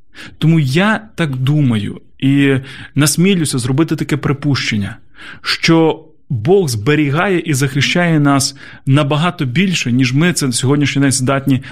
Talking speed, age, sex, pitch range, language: 120 wpm, 30-49, male, 125-150 Hz, Ukrainian